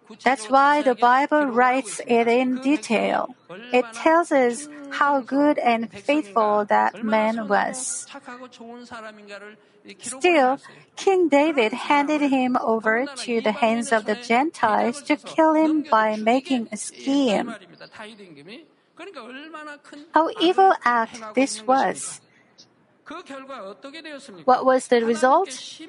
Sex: female